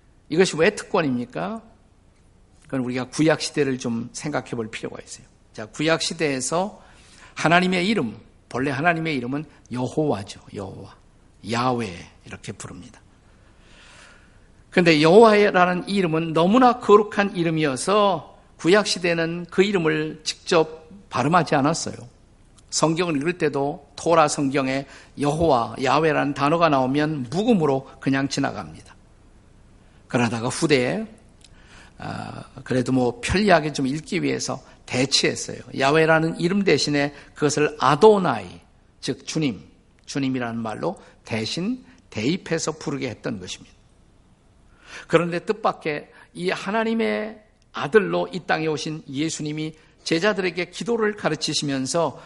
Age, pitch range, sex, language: 50-69, 125-180 Hz, male, Korean